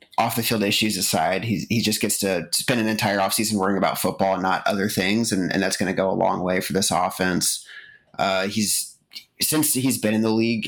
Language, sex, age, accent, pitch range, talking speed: English, male, 30-49, American, 100-115 Hz, 230 wpm